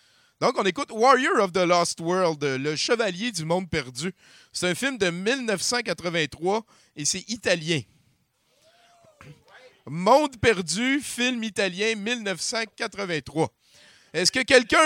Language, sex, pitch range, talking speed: French, male, 190-260 Hz, 115 wpm